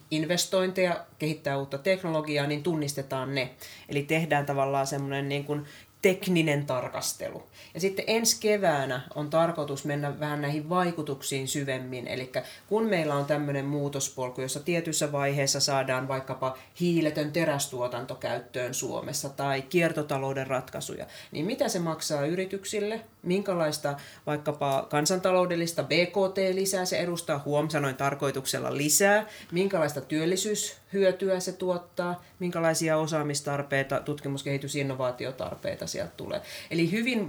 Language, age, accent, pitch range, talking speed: Finnish, 30-49, native, 140-175 Hz, 115 wpm